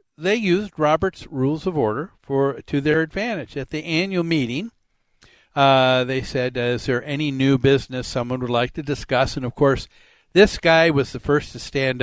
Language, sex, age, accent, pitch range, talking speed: English, male, 50-69, American, 135-165 Hz, 185 wpm